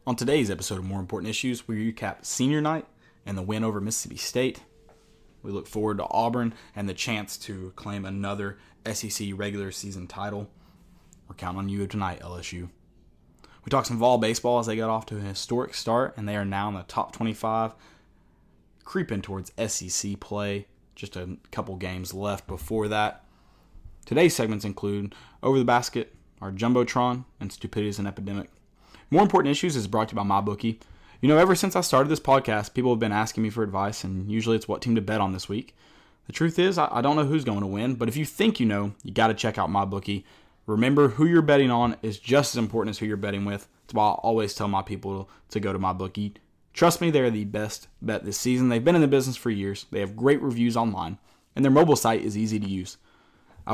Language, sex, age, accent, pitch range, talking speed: English, male, 20-39, American, 100-120 Hz, 215 wpm